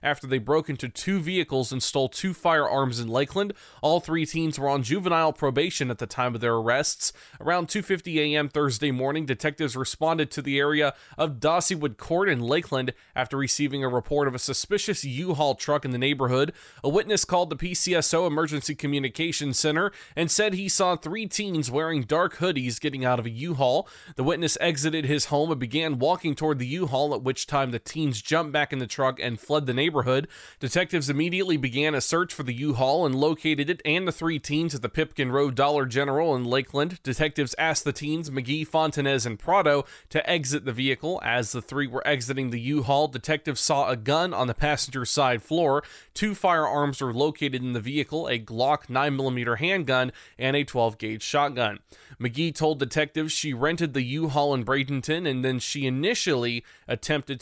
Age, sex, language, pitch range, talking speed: 20-39, male, English, 130-160 Hz, 190 wpm